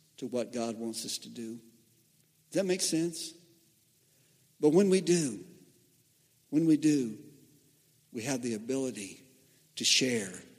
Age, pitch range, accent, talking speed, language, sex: 50-69, 125-155 Hz, American, 135 wpm, English, male